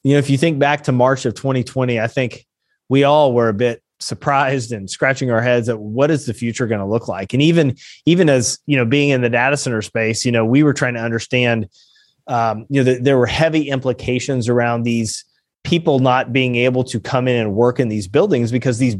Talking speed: 235 wpm